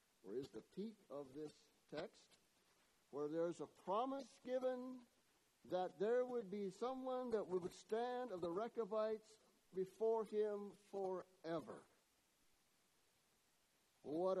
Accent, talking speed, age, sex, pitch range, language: American, 115 wpm, 60-79, male, 175-220 Hz, English